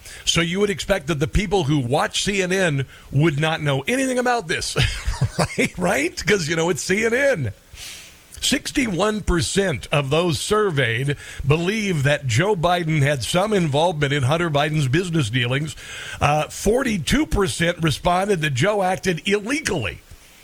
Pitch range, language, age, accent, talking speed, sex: 145-180 Hz, English, 50-69, American, 135 wpm, male